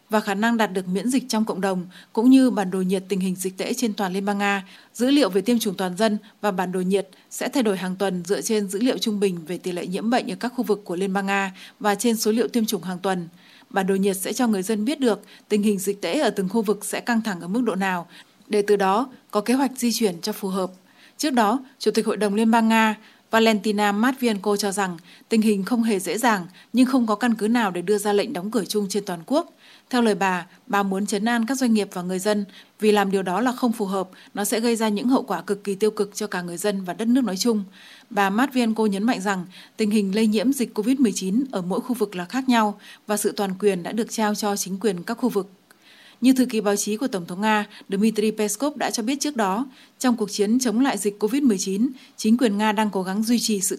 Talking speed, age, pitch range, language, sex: 270 wpm, 20-39, 195-235 Hz, Vietnamese, female